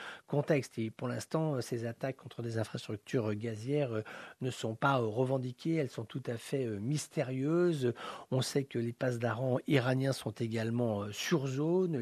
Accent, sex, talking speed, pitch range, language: French, male, 155 wpm, 120-140 Hz, English